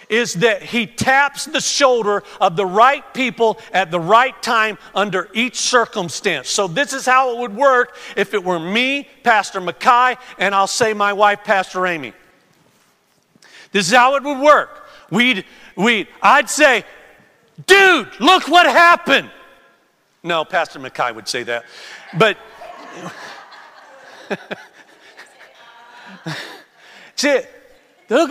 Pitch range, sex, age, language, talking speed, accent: 215-295 Hz, male, 50-69, English, 125 wpm, American